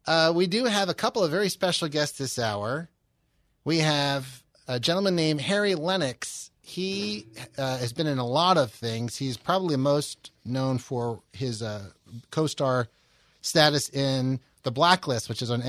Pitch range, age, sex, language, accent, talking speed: 125-170 Hz, 30-49, male, English, American, 165 wpm